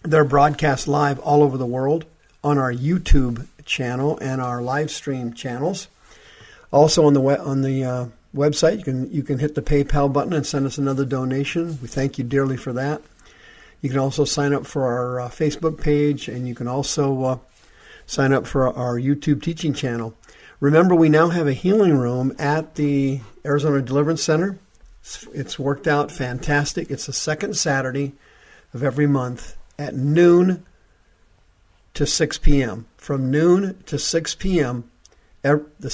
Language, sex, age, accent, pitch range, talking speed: English, male, 50-69, American, 130-150 Hz, 165 wpm